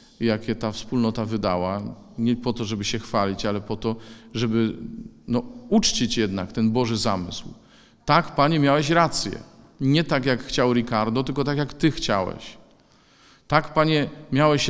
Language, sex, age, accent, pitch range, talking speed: Polish, male, 40-59, native, 115-130 Hz, 145 wpm